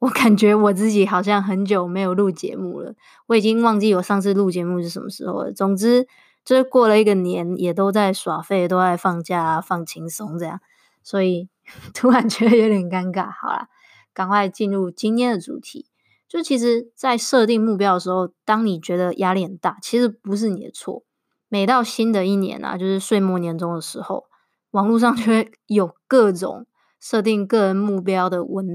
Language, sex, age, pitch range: Chinese, female, 20-39, 185-230 Hz